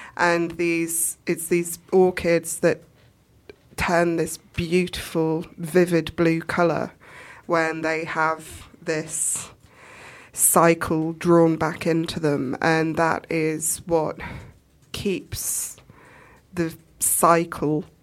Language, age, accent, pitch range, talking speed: English, 20-39, British, 155-170 Hz, 95 wpm